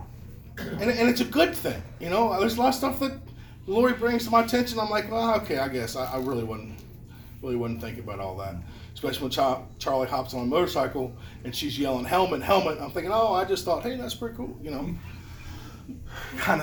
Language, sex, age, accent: English, male, 40-59, American